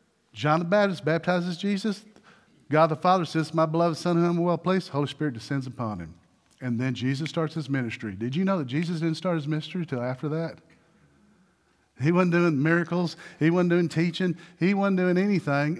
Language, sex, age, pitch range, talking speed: English, male, 40-59, 155-220 Hz, 200 wpm